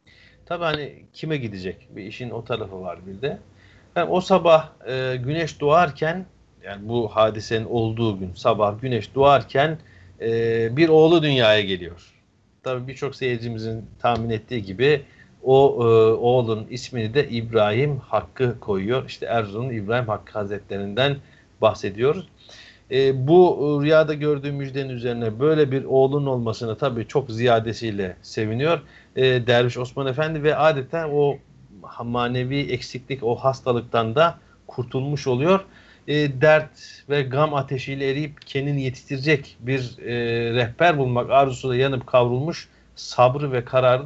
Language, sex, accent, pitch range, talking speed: Turkish, male, native, 115-145 Hz, 130 wpm